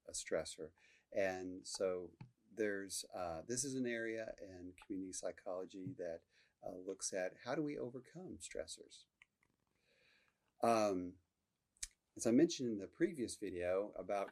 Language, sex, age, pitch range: English, male, 40-59, 90-120 Hz